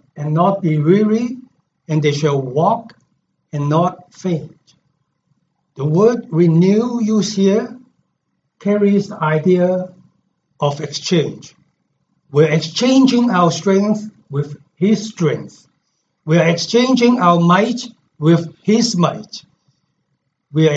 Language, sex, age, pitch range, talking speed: English, male, 60-79, 155-210 Hz, 105 wpm